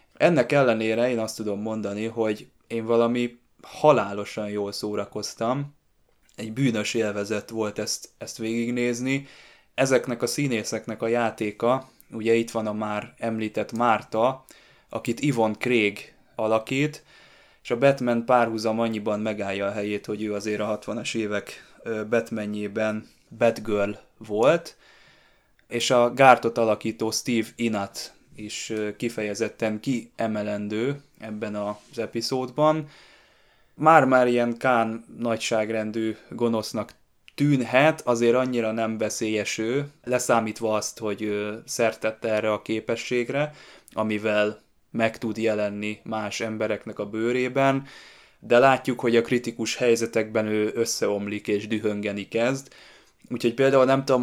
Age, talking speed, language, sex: 20-39, 115 wpm, Hungarian, male